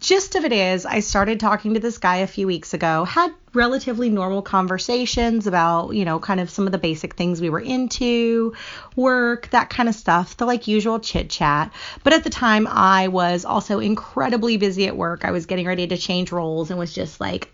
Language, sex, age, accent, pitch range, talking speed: English, female, 30-49, American, 180-235 Hz, 215 wpm